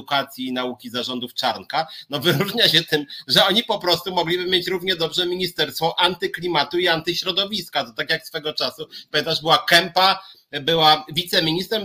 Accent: native